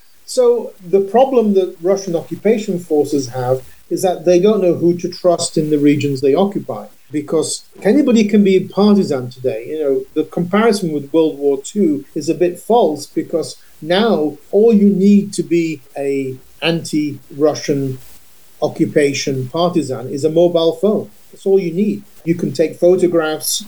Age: 50-69